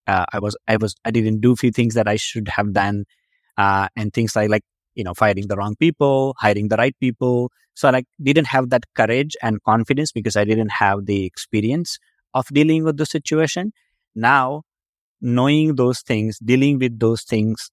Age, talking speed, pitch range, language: 20-39, 195 wpm, 105-130 Hz, English